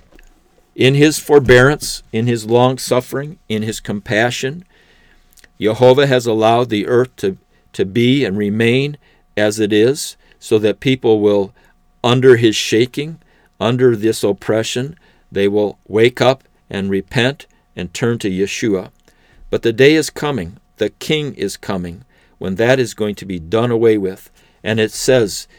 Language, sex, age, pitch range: English, male, 50-69, 95-125 Hz